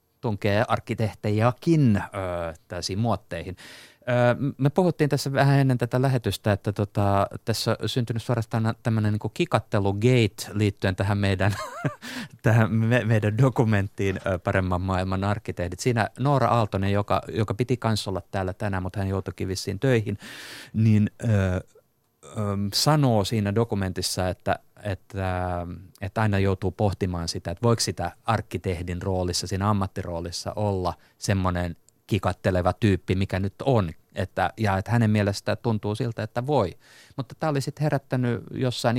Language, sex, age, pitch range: Finnish, male, 30-49, 95-115 Hz